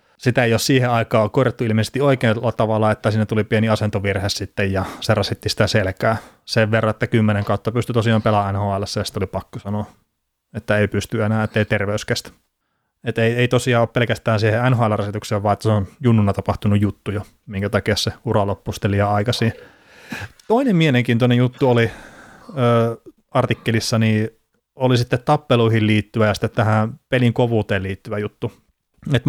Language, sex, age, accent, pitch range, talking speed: Finnish, male, 30-49, native, 105-120 Hz, 175 wpm